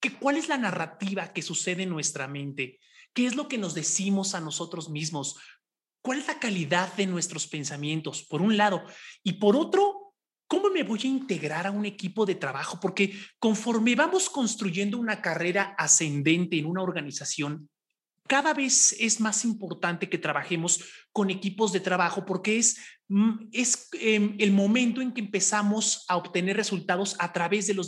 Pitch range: 165-225 Hz